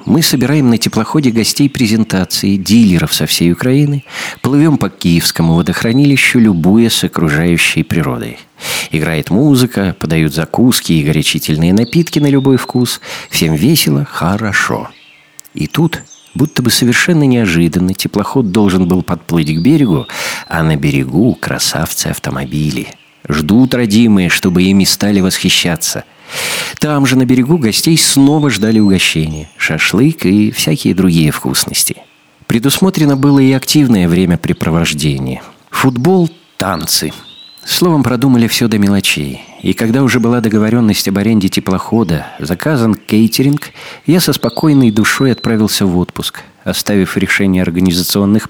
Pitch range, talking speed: 90-135 Hz, 120 wpm